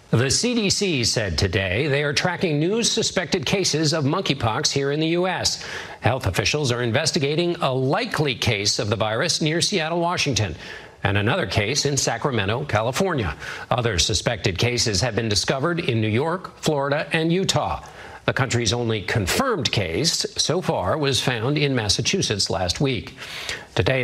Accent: American